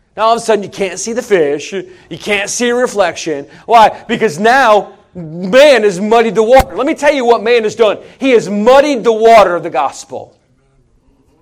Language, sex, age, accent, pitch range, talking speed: English, male, 40-59, American, 175-245 Hz, 205 wpm